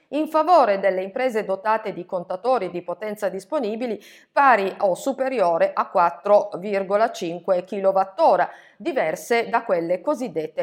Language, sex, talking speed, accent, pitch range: Italian, female, 115 wpm, native, 195-270 Hz